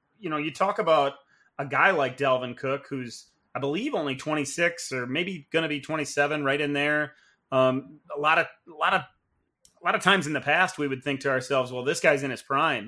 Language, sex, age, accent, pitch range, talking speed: English, male, 30-49, American, 140-170 Hz, 230 wpm